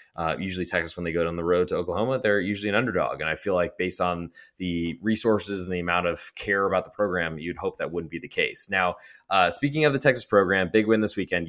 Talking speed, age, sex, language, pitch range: 255 wpm, 20-39, male, English, 85-105 Hz